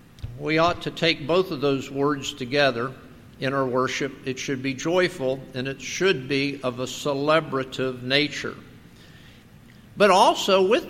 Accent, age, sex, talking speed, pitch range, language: American, 50-69, male, 150 wpm, 130-165 Hz, English